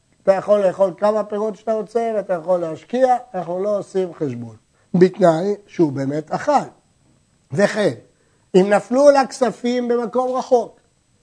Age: 60-79